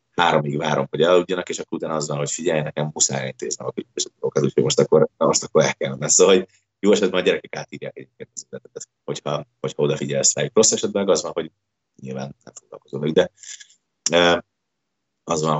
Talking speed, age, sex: 175 wpm, 30-49, male